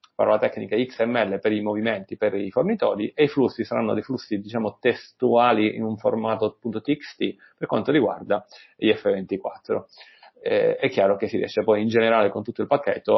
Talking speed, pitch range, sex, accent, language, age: 180 wpm, 105-120 Hz, male, native, Italian, 30-49